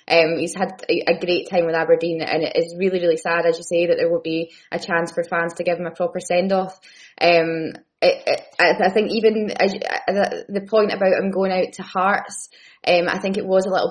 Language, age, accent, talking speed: English, 20-39, British, 215 wpm